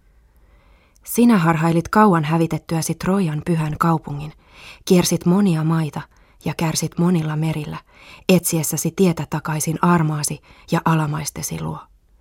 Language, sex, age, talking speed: Finnish, female, 30-49, 105 wpm